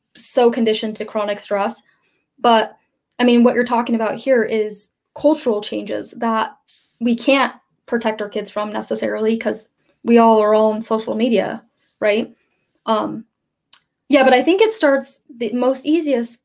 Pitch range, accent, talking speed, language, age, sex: 220-255 Hz, American, 155 wpm, English, 10-29, female